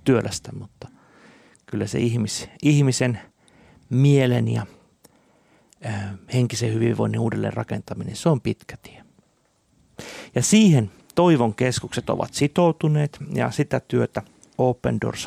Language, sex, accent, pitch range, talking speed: Finnish, male, native, 115-140 Hz, 100 wpm